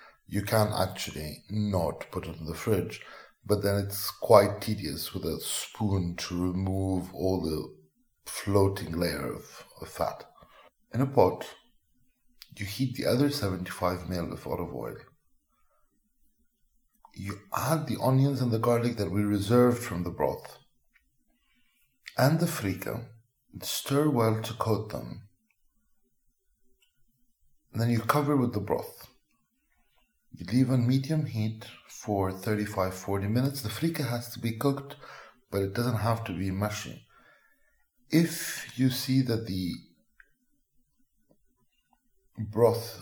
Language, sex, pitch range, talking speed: English, male, 100-125 Hz, 130 wpm